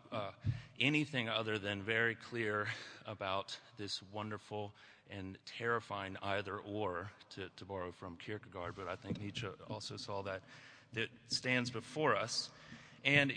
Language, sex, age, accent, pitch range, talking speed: English, male, 30-49, American, 100-130 Hz, 135 wpm